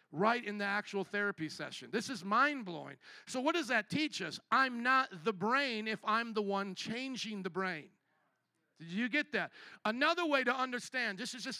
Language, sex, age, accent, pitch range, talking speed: English, male, 50-69, American, 190-255 Hz, 190 wpm